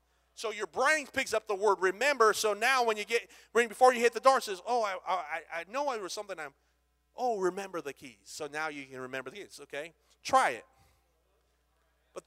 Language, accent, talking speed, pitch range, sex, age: English, American, 225 wpm, 180-255 Hz, male, 30-49